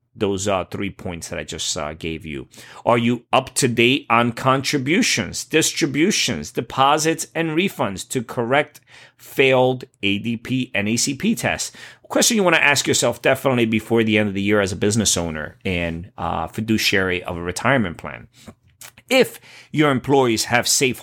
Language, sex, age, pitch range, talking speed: English, male, 30-49, 110-135 Hz, 165 wpm